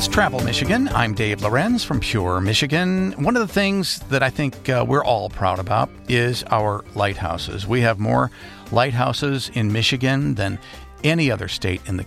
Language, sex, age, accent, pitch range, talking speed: English, male, 50-69, American, 105-140 Hz, 175 wpm